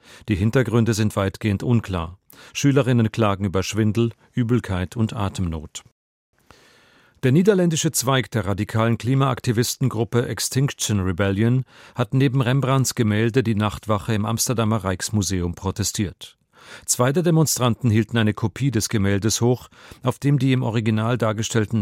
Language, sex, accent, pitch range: German, male, German, 100-125 Hz